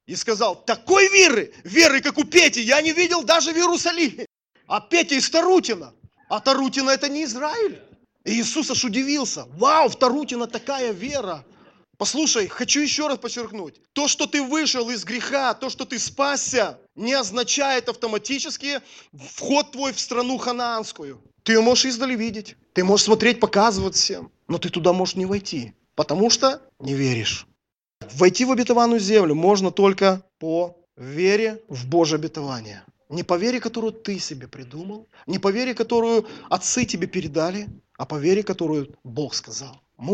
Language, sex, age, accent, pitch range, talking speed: Russian, male, 30-49, native, 175-250 Hz, 160 wpm